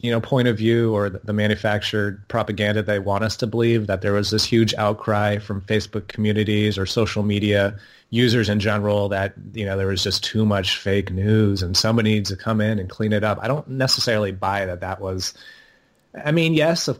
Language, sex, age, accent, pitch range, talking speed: English, male, 30-49, American, 100-115 Hz, 210 wpm